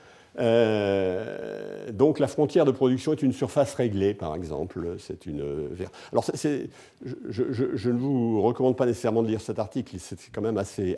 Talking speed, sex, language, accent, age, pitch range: 175 wpm, male, French, French, 50-69, 100-135 Hz